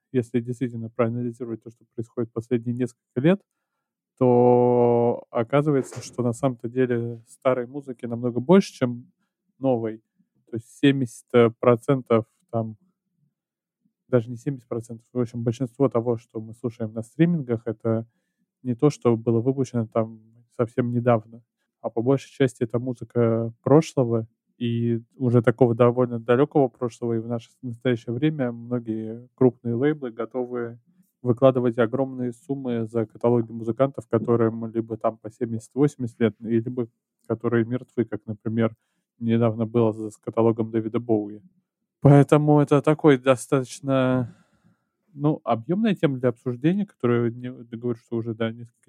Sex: male